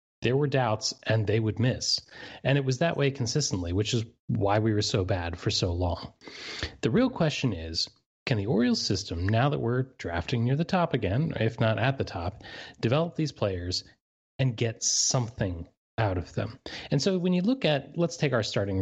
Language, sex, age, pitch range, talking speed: English, male, 30-49, 100-130 Hz, 200 wpm